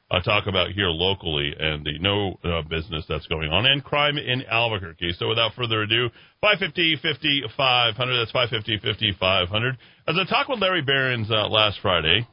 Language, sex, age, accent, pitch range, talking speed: English, male, 40-59, American, 110-150 Hz, 175 wpm